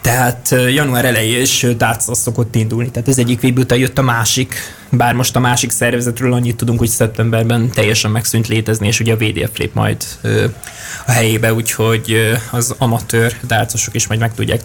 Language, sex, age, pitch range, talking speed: Hungarian, male, 20-39, 115-125 Hz, 180 wpm